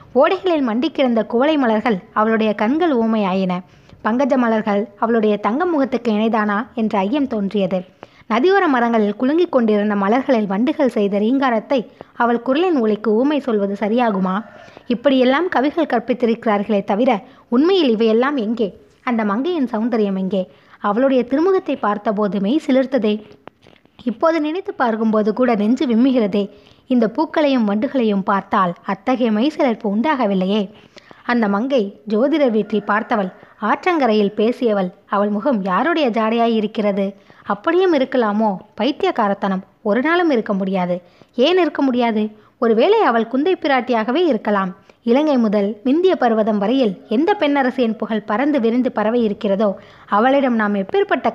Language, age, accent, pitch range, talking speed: Tamil, 20-39, native, 210-270 Hz, 115 wpm